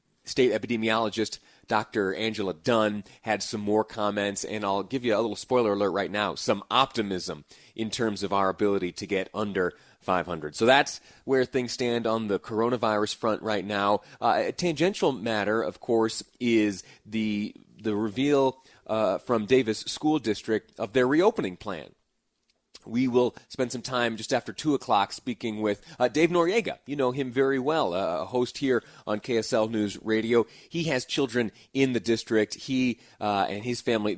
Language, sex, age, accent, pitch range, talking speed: English, male, 30-49, American, 100-120 Hz, 170 wpm